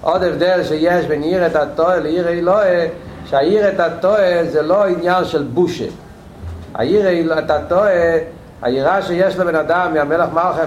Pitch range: 160-200 Hz